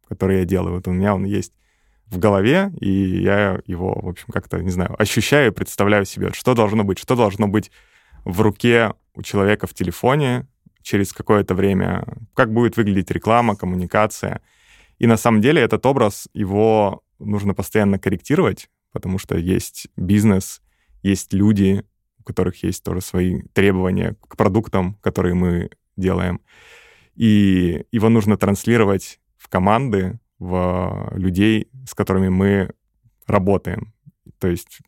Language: Russian